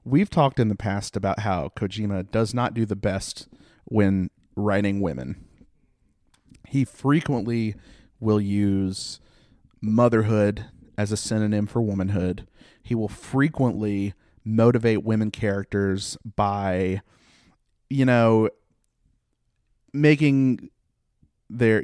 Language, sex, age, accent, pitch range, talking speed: English, male, 30-49, American, 100-120 Hz, 100 wpm